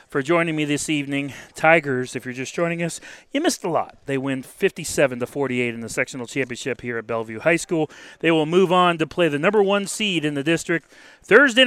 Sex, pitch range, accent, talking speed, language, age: male, 130-195 Hz, American, 215 wpm, English, 30-49